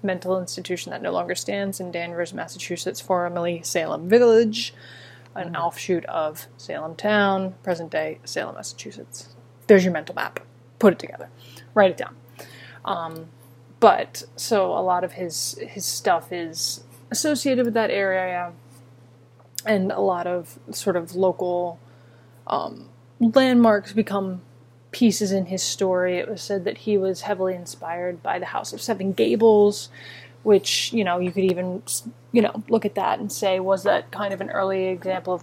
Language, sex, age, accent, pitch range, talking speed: English, female, 20-39, American, 125-200 Hz, 160 wpm